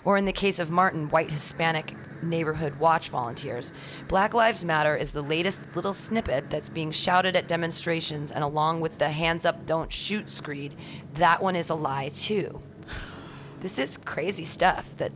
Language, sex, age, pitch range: English, female, 30-49, 150-180 Hz